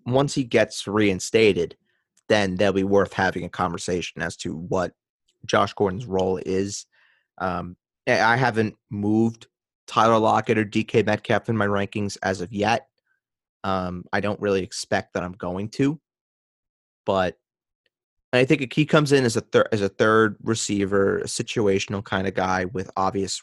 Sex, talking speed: male, 165 wpm